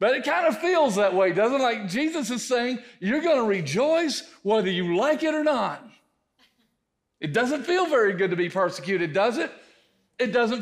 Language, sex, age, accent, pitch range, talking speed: English, male, 50-69, American, 180-255 Hz, 200 wpm